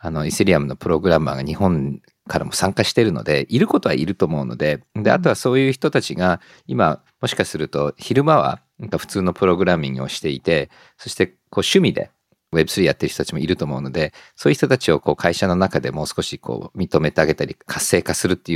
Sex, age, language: male, 50-69, Japanese